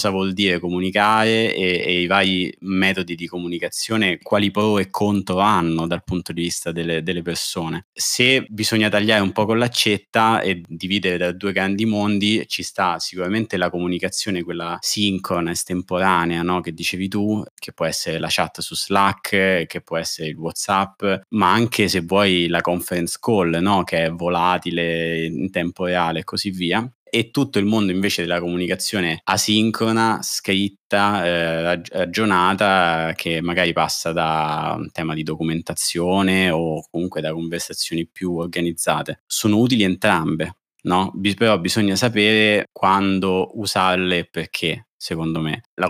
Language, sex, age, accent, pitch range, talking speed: Italian, male, 20-39, native, 85-100 Hz, 150 wpm